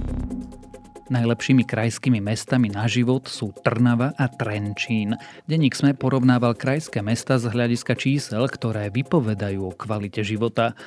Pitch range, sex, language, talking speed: 105-130 Hz, male, Slovak, 120 wpm